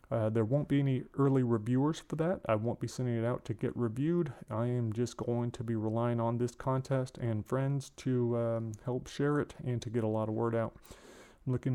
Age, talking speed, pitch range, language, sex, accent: 30-49, 230 wpm, 115-135 Hz, English, male, American